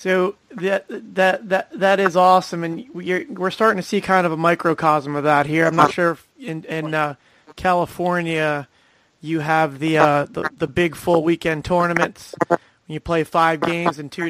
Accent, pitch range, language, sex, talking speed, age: American, 155-185 Hz, English, male, 190 wpm, 30-49